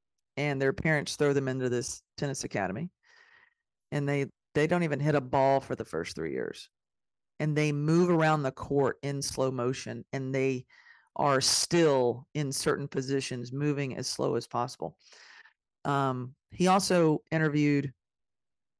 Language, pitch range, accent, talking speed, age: English, 130-155 Hz, American, 150 wpm, 40-59